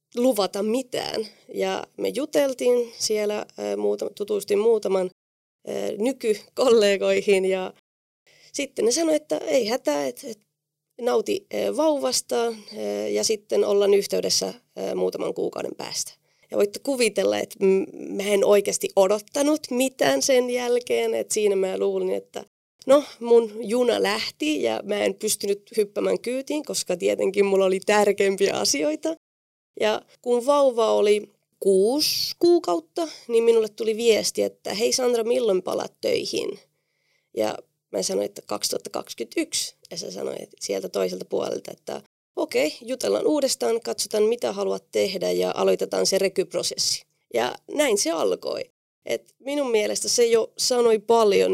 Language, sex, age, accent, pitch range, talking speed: Finnish, female, 20-39, native, 195-310 Hz, 125 wpm